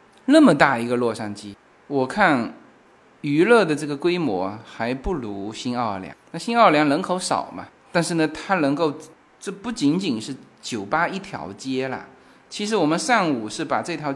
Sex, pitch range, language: male, 130-200 Hz, Chinese